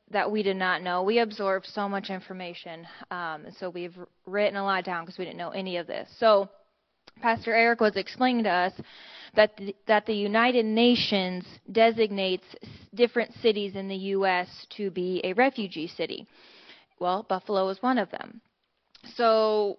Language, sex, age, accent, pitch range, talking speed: English, female, 20-39, American, 185-220 Hz, 165 wpm